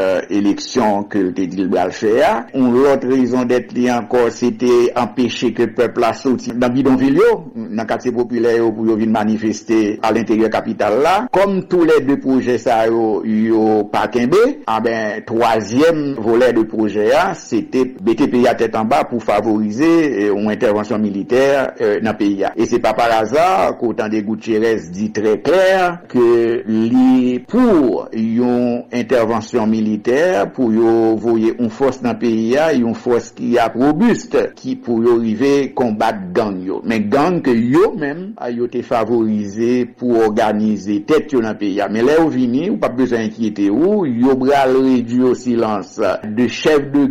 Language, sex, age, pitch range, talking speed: English, male, 60-79, 110-130 Hz, 145 wpm